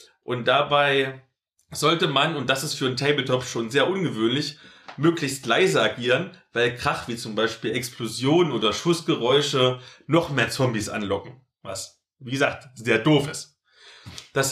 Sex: male